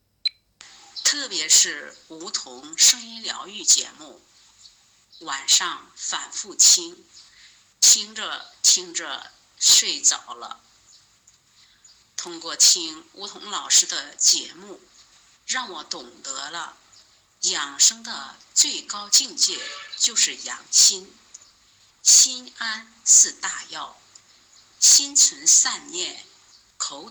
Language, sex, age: Chinese, female, 50-69